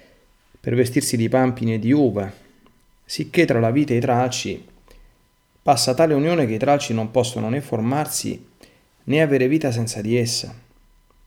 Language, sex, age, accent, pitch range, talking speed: Italian, male, 40-59, native, 105-130 Hz, 160 wpm